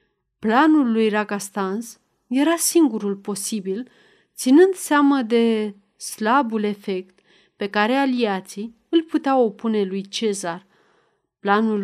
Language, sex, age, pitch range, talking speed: Romanian, female, 30-49, 200-275 Hz, 100 wpm